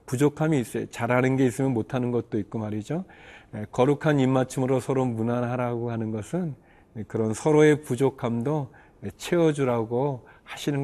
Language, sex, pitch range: Korean, male, 115-145 Hz